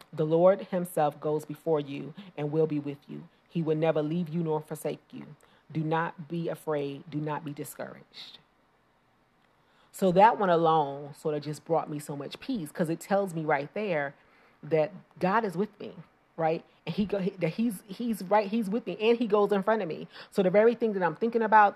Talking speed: 210 wpm